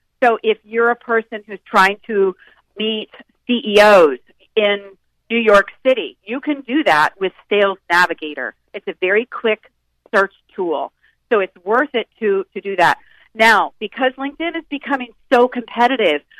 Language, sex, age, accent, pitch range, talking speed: English, female, 40-59, American, 195-255 Hz, 155 wpm